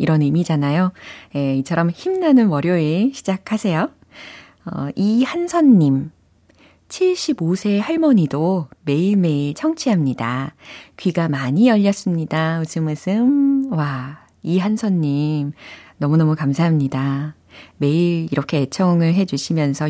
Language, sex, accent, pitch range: Korean, female, native, 145-210 Hz